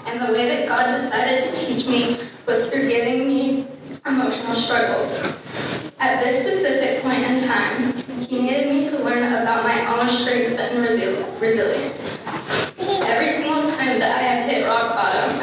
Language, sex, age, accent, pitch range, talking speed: English, female, 10-29, American, 245-275 Hz, 155 wpm